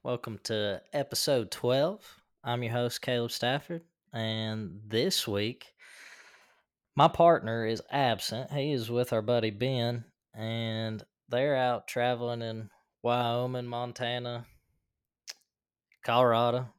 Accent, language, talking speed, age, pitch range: American, English, 105 wpm, 10-29, 105-125 Hz